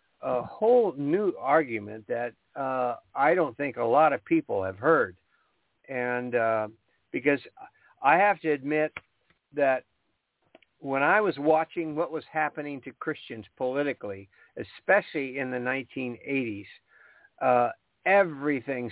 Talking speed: 125 wpm